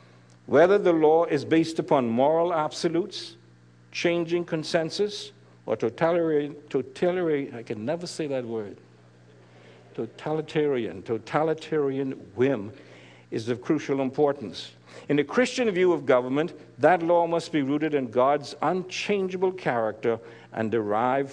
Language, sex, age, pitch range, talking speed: English, male, 60-79, 110-175 Hz, 120 wpm